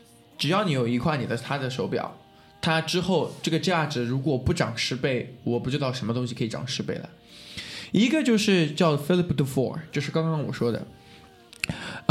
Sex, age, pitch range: male, 20-39, 140-190 Hz